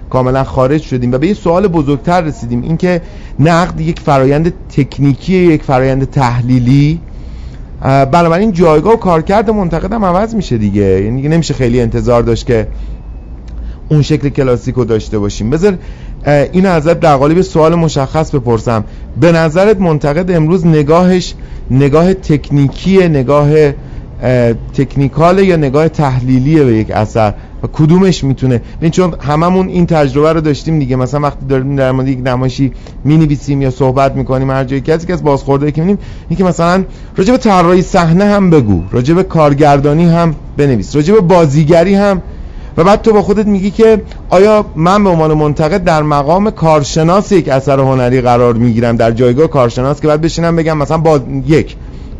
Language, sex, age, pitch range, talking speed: Persian, male, 50-69, 130-170 Hz, 155 wpm